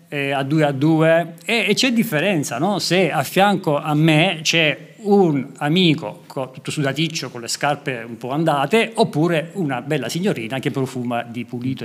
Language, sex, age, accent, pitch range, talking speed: Italian, male, 50-69, native, 135-190 Hz, 175 wpm